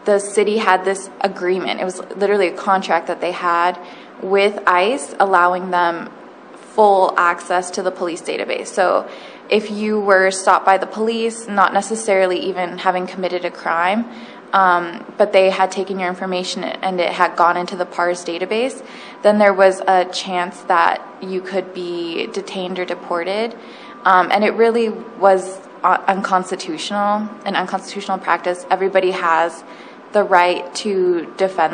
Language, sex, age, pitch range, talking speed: English, female, 20-39, 180-205 Hz, 150 wpm